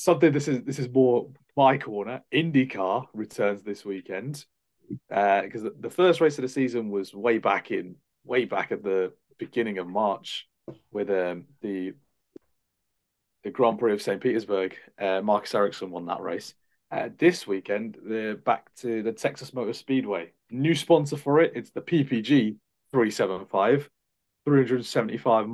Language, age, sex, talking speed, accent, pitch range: English, 30-49, male, 155 wpm, British, 105-135 Hz